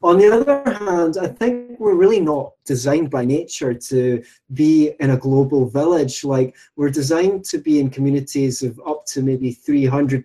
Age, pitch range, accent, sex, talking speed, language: 20-39, 130-160 Hz, British, male, 175 wpm, English